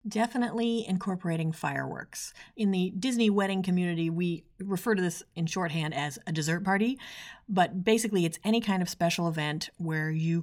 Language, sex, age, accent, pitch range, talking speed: English, female, 40-59, American, 160-195 Hz, 160 wpm